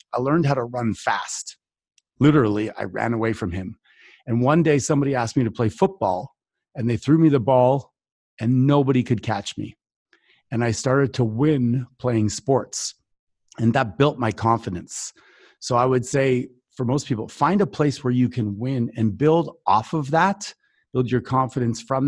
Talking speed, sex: 180 wpm, male